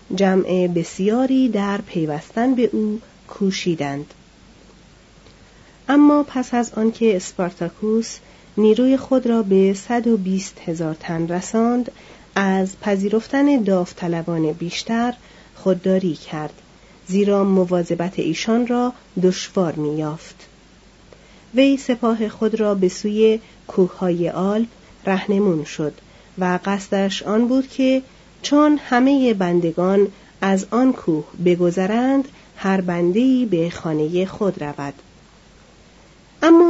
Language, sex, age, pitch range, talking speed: Persian, female, 40-59, 180-230 Hz, 100 wpm